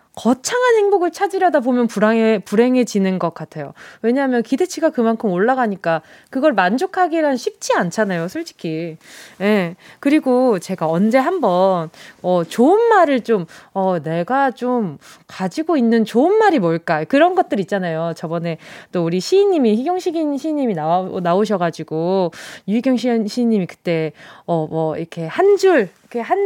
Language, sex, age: Korean, female, 20-39